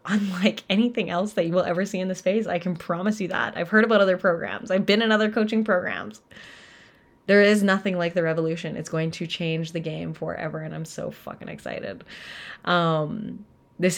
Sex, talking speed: female, 200 wpm